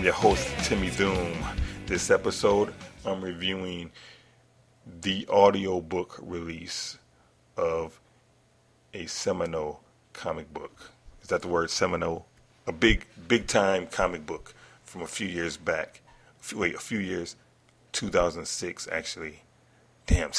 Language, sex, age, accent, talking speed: English, male, 30-49, American, 115 wpm